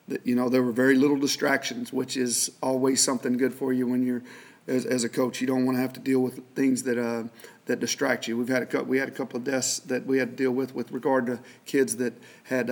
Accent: American